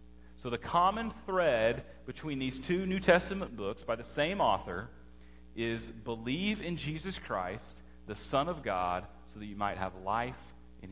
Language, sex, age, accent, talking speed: English, male, 30-49, American, 165 wpm